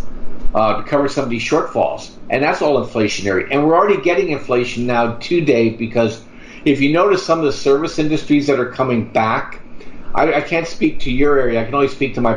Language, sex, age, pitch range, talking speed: English, male, 50-69, 115-140 Hz, 215 wpm